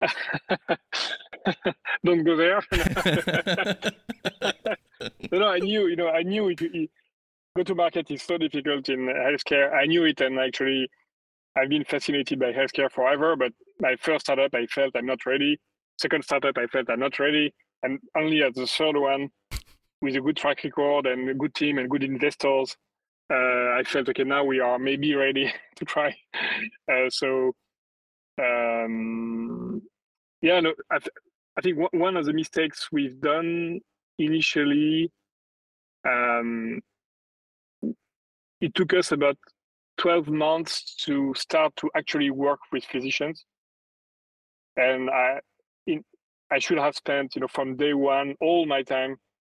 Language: English